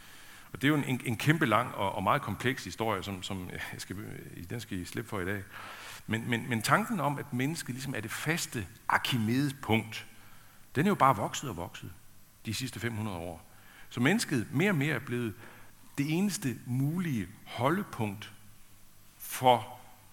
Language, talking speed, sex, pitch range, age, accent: Danish, 175 wpm, male, 100-135 Hz, 60-79, native